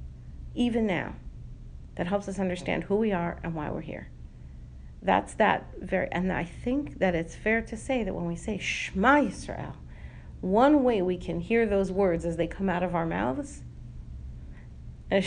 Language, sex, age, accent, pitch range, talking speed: English, female, 40-59, American, 175-255 Hz, 175 wpm